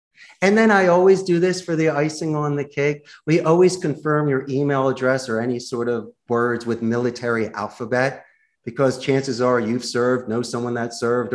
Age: 30-49